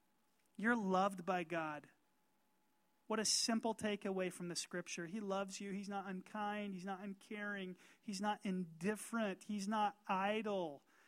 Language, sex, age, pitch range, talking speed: English, male, 30-49, 195-245 Hz, 140 wpm